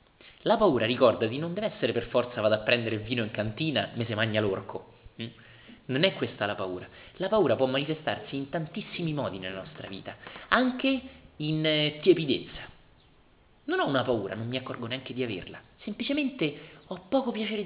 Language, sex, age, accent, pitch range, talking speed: Italian, male, 30-49, native, 110-180 Hz, 175 wpm